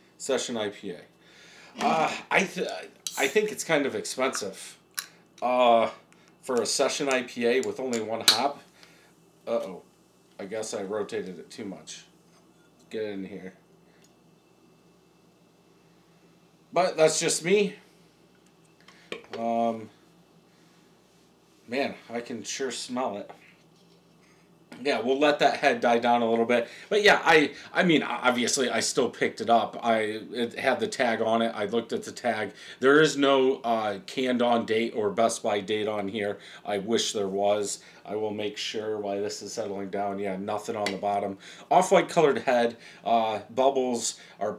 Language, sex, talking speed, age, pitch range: English, male, 150 wpm, 40-59, 105-130 Hz